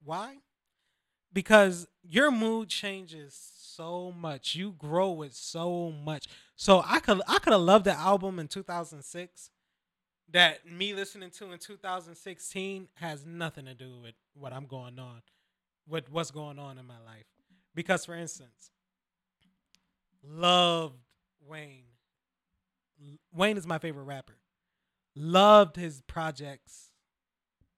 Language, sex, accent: English, male, American